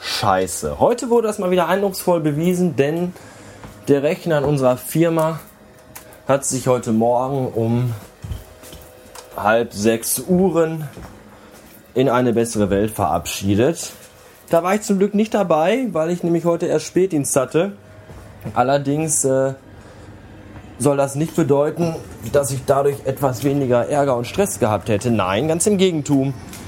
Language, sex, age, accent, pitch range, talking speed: German, male, 20-39, German, 115-160 Hz, 135 wpm